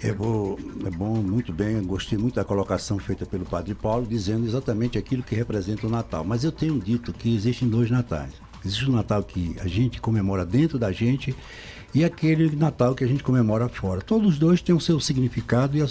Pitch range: 105-155 Hz